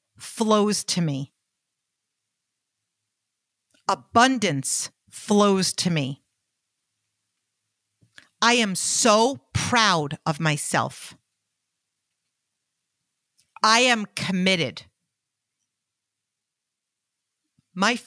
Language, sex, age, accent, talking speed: English, female, 50-69, American, 55 wpm